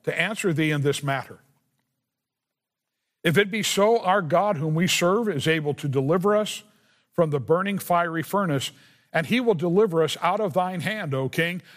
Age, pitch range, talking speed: 50-69, 145-190 Hz, 185 wpm